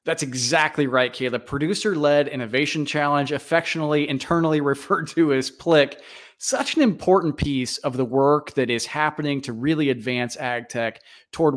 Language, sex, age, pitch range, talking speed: English, male, 30-49, 120-150 Hz, 150 wpm